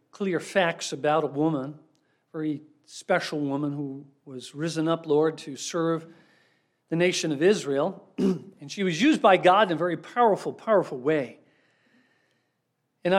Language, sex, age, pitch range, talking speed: English, male, 50-69, 145-175 Hz, 150 wpm